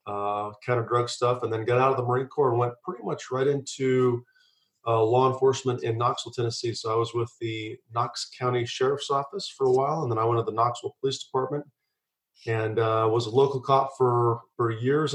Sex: male